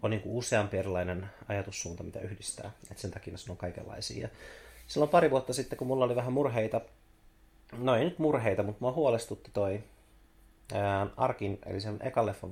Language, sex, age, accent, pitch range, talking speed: Finnish, male, 30-49, native, 95-115 Hz, 175 wpm